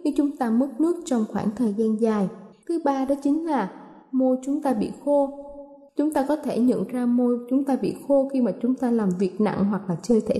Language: Vietnamese